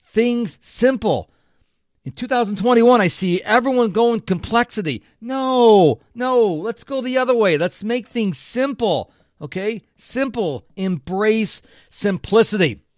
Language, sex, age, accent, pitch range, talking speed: English, male, 50-69, American, 160-235 Hz, 110 wpm